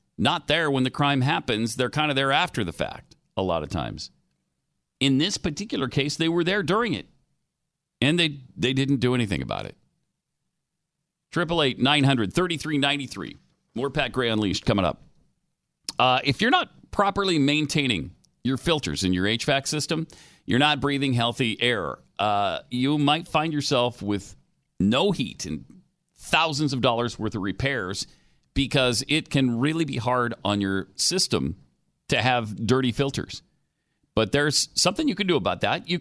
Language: English